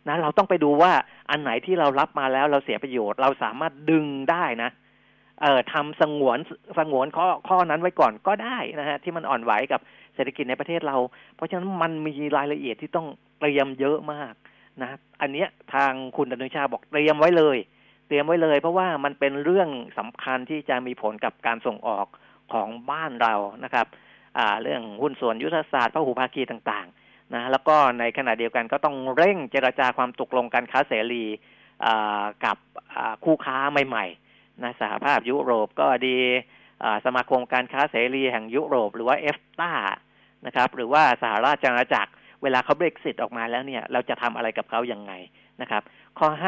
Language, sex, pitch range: Thai, male, 125-150 Hz